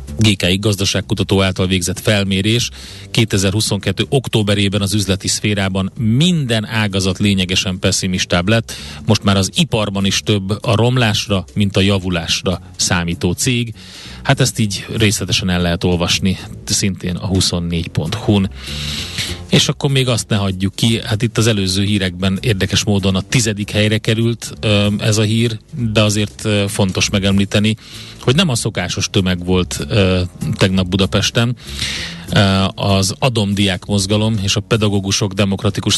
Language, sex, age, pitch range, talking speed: Hungarian, male, 30-49, 95-110 Hz, 135 wpm